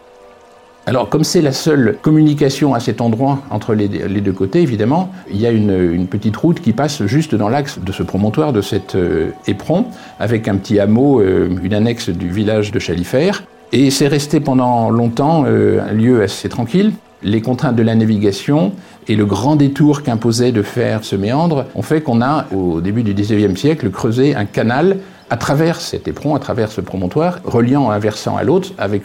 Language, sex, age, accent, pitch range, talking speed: French, male, 50-69, French, 105-145 Hz, 195 wpm